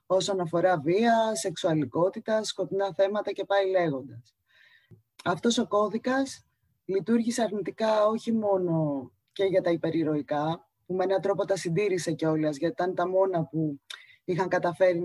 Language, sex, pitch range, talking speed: Greek, female, 160-200 Hz, 135 wpm